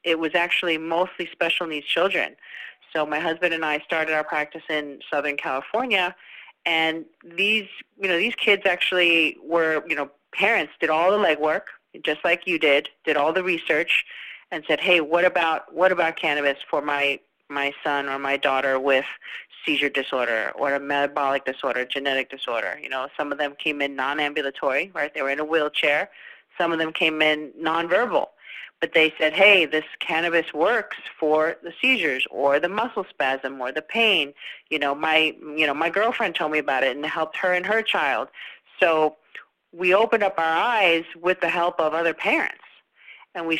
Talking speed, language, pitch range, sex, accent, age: 185 wpm, English, 145-170 Hz, female, American, 30-49